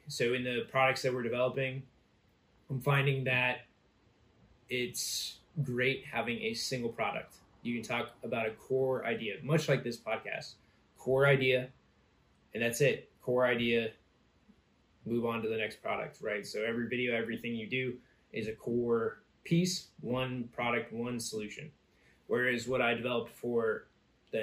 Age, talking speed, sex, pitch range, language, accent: 20-39, 150 wpm, male, 115-135 Hz, English, American